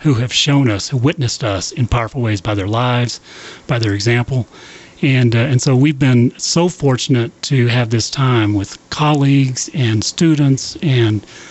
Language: English